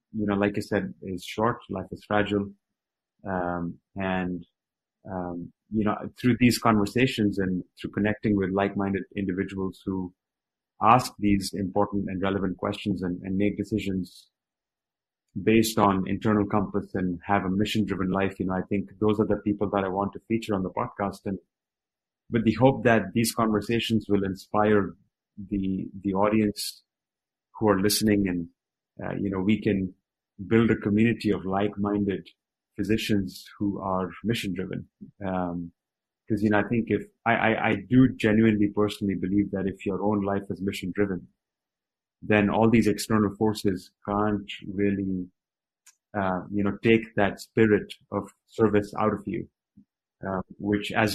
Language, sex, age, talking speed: English, male, 30-49, 155 wpm